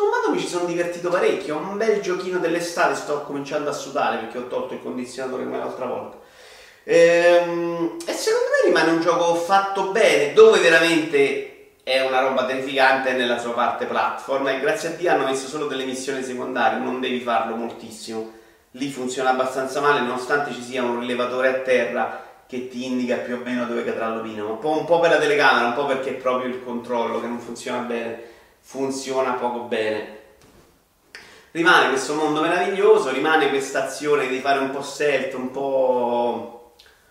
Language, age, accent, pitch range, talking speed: Italian, 30-49, native, 130-165 Hz, 180 wpm